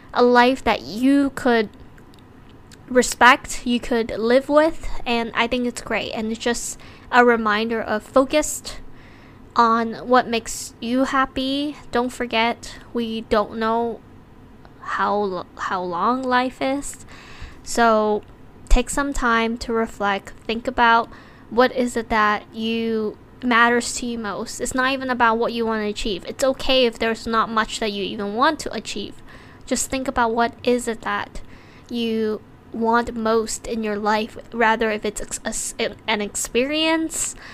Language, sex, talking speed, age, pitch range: English, female, 150 wpm, 10-29, 220-260 Hz